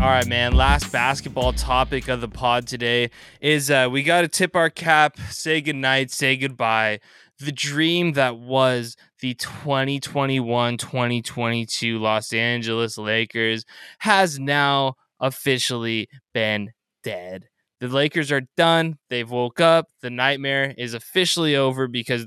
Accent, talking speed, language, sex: American, 135 wpm, English, male